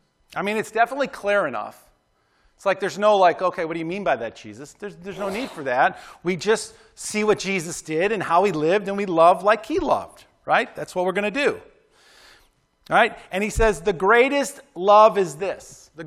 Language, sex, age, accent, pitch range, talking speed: English, male, 40-59, American, 180-240 Hz, 220 wpm